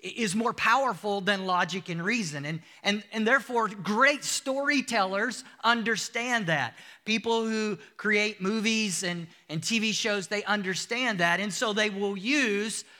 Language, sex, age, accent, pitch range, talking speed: English, male, 40-59, American, 175-215 Hz, 145 wpm